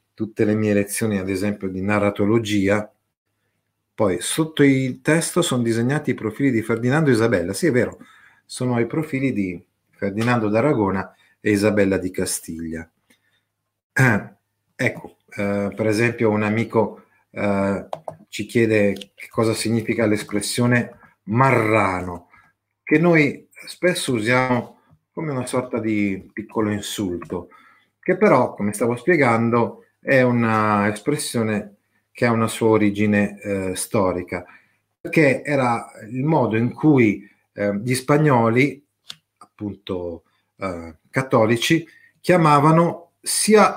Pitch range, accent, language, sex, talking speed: 100-145 Hz, native, Italian, male, 120 wpm